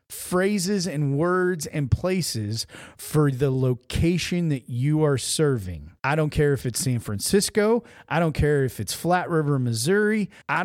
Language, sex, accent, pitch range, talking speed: English, male, American, 130-175 Hz, 160 wpm